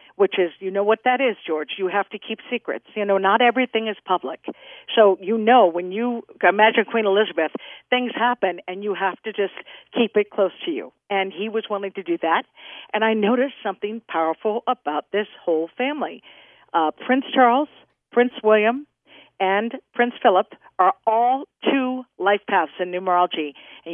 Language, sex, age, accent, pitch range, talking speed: English, female, 50-69, American, 195-255 Hz, 180 wpm